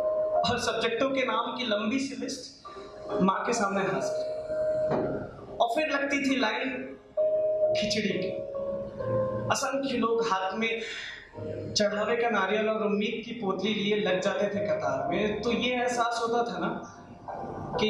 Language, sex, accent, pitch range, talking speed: Hindi, male, native, 200-275 Hz, 135 wpm